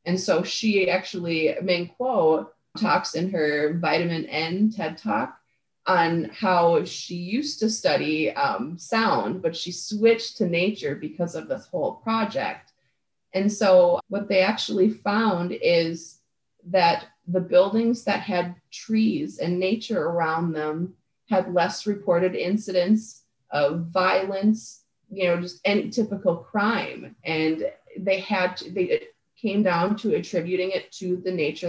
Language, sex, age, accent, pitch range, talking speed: English, female, 30-49, American, 165-200 Hz, 140 wpm